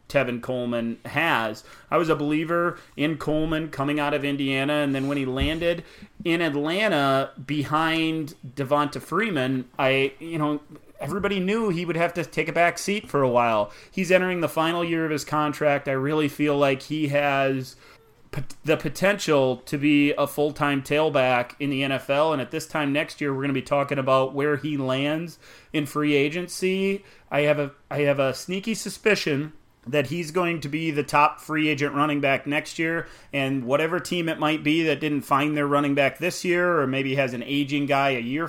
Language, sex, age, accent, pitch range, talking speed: English, male, 30-49, American, 135-160 Hz, 195 wpm